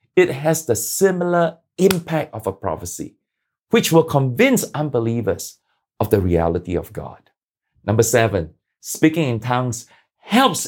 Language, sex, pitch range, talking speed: English, male, 115-170 Hz, 130 wpm